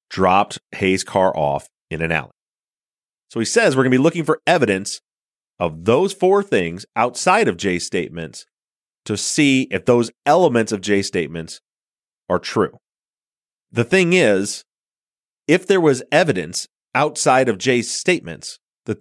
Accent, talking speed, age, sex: American, 150 wpm, 30-49, male